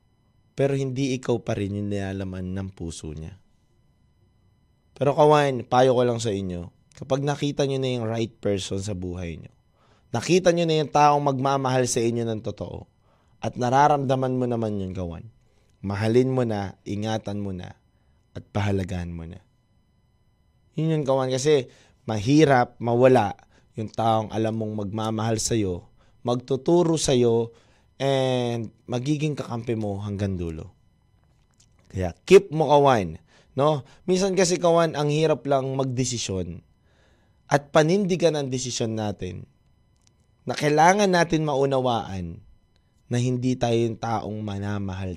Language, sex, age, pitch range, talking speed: Filipino, male, 20-39, 100-140 Hz, 135 wpm